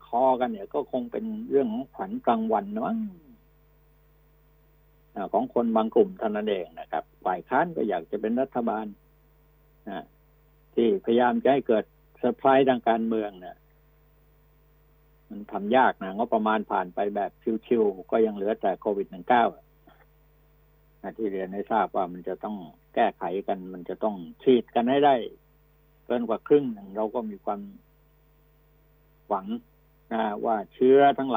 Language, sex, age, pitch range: Thai, male, 60-79, 110-150 Hz